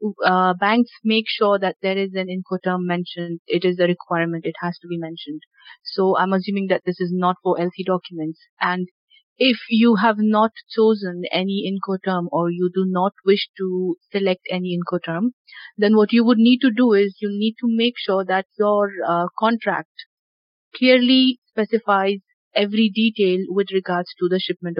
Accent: Indian